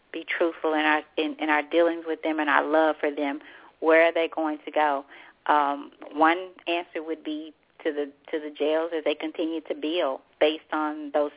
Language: English